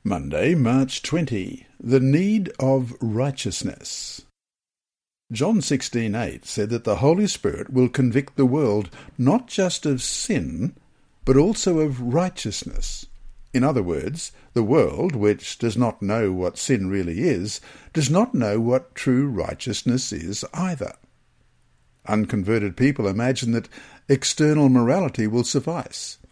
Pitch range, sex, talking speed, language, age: 115-155 Hz, male, 125 wpm, English, 60-79